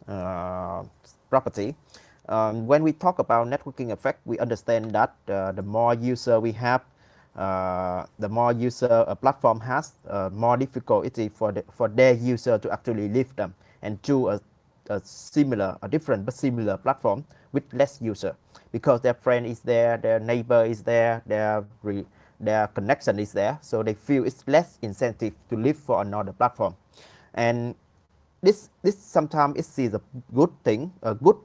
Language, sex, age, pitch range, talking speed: Vietnamese, male, 20-39, 105-130 Hz, 170 wpm